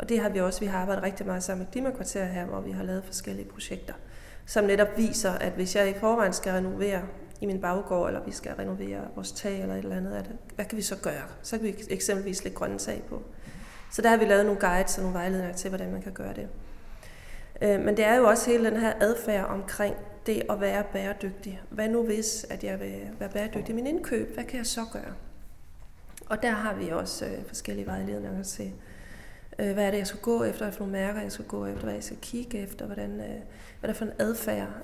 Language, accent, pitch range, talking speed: Danish, native, 175-215 Hz, 225 wpm